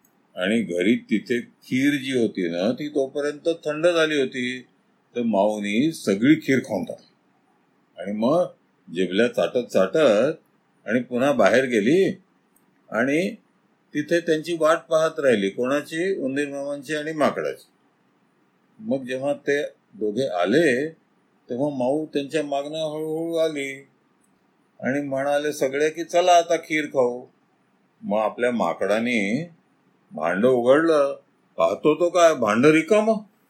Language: Marathi